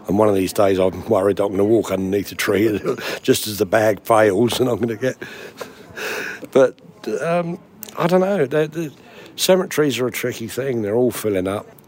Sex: male